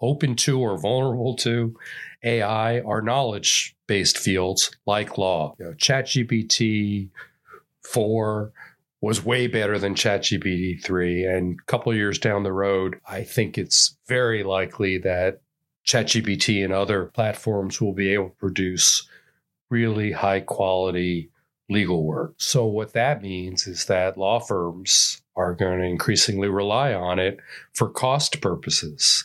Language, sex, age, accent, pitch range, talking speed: English, male, 40-59, American, 95-120 Hz, 130 wpm